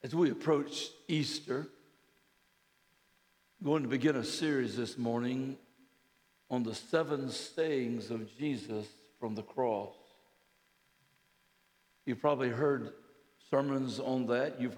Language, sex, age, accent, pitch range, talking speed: English, male, 60-79, American, 125-175 Hz, 115 wpm